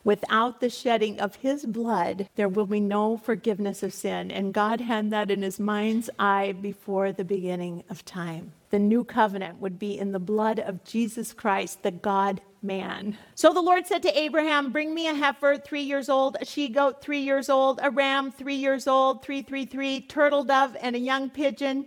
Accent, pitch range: American, 210-265 Hz